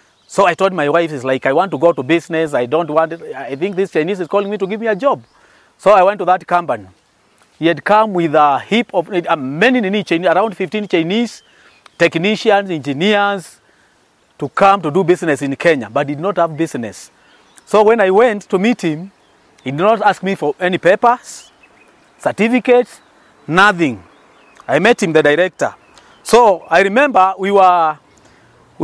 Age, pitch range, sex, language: 30-49, 165-215 Hz, male, English